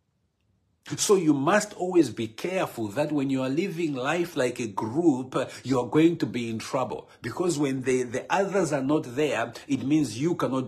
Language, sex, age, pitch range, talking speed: English, male, 50-69, 120-155 Hz, 190 wpm